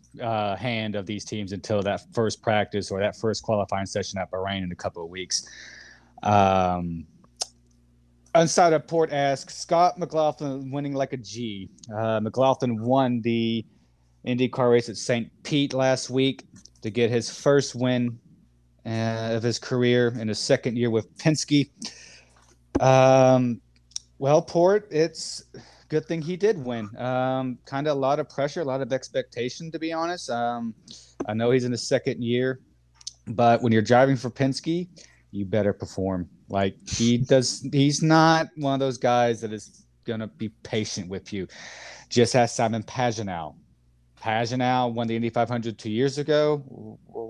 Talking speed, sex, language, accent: 160 wpm, male, English, American